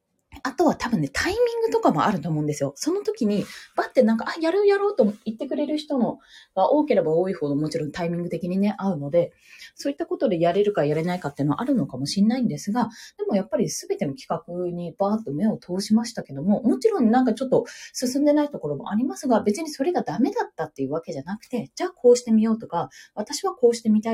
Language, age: Japanese, 20-39